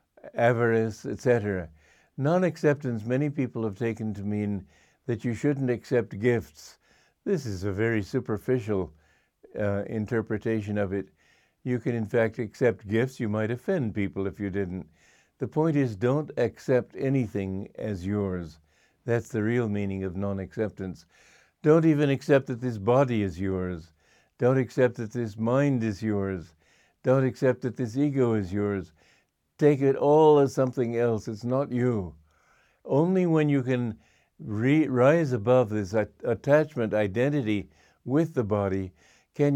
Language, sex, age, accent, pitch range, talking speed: English, male, 60-79, American, 100-130 Hz, 145 wpm